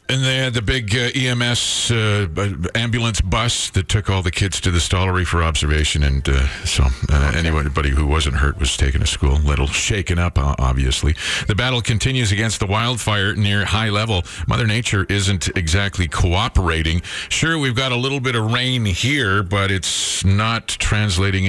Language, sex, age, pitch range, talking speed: English, male, 50-69, 85-110 Hz, 180 wpm